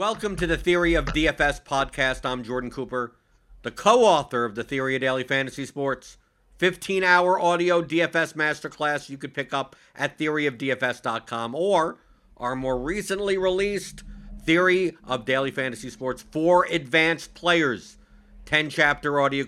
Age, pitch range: 50-69, 120-145 Hz